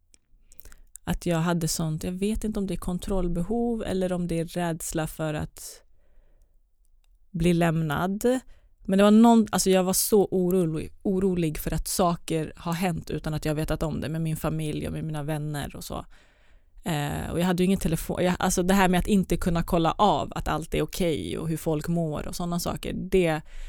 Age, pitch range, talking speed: 30-49, 155-195 Hz, 200 wpm